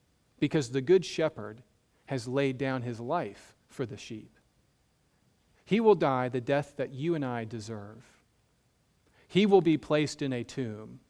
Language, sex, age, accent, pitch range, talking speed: English, male, 40-59, American, 120-145 Hz, 155 wpm